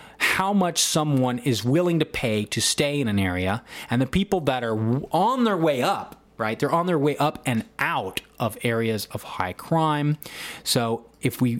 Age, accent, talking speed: 30-49, American, 190 wpm